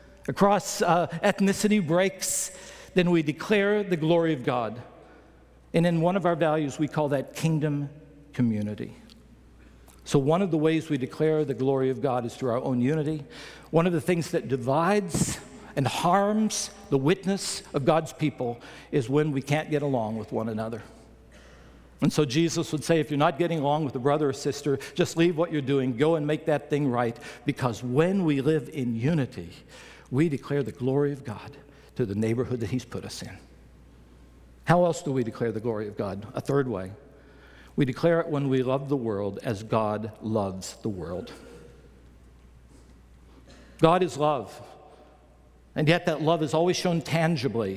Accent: American